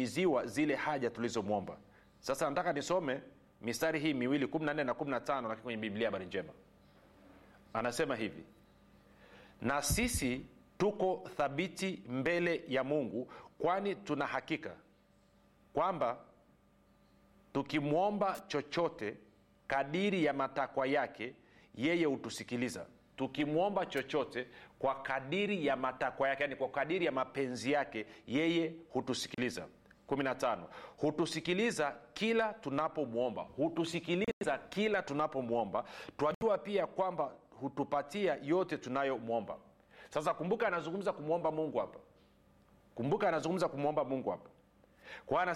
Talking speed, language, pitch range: 105 wpm, Swahili, 135-180 Hz